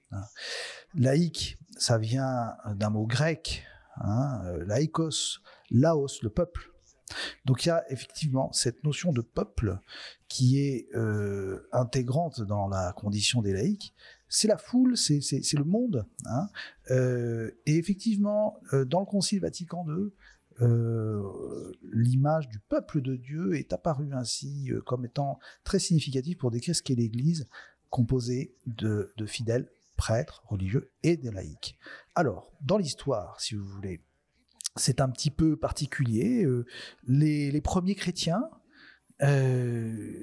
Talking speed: 135 wpm